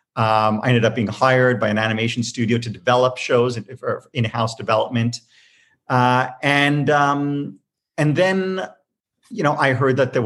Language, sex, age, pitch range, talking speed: English, male, 40-59, 110-130 Hz, 165 wpm